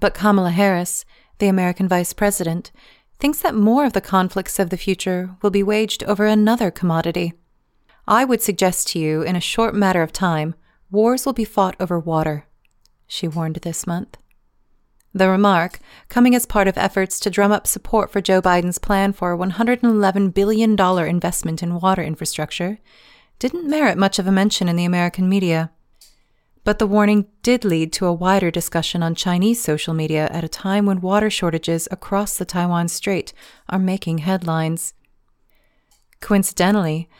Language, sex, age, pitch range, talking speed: English, female, 30-49, 170-205 Hz, 165 wpm